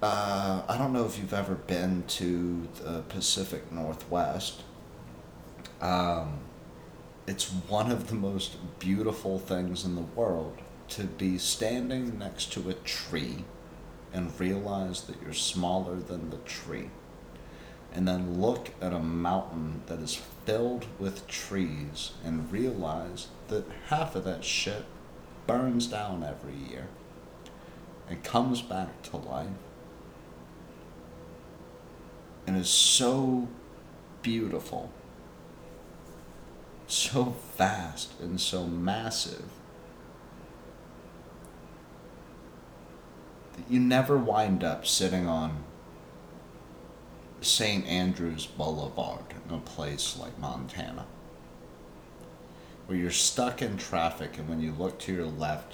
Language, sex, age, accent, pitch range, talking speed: English, male, 30-49, American, 80-95 Hz, 110 wpm